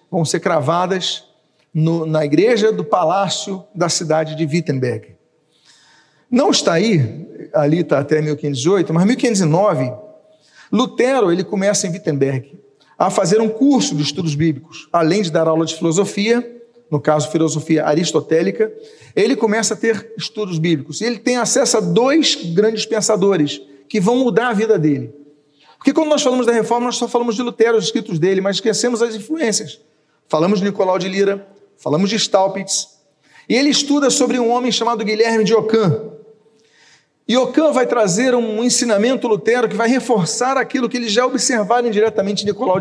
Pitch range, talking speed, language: 155-230 Hz, 165 wpm, Portuguese